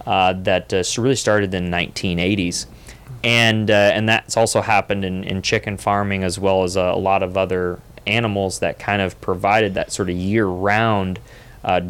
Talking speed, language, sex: 185 wpm, English, male